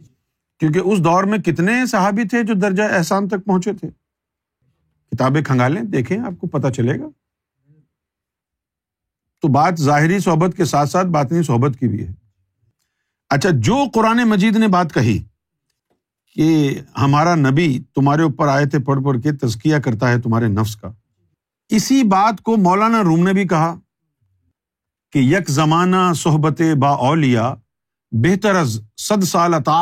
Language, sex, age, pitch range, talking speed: Urdu, male, 50-69, 130-190 Hz, 145 wpm